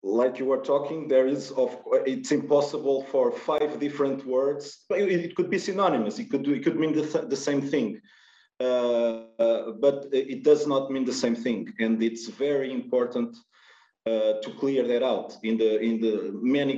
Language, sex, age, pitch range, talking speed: English, male, 40-59, 125-160 Hz, 185 wpm